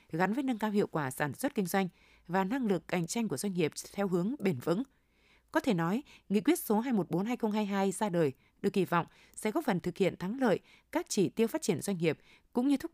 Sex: female